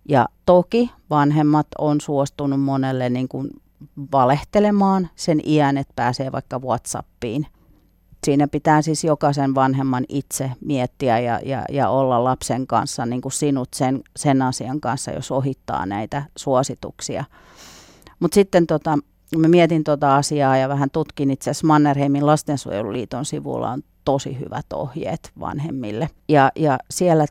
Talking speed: 135 wpm